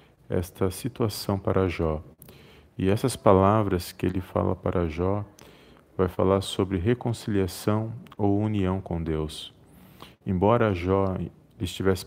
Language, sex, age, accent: Portuguese, male, 40-59, Brazilian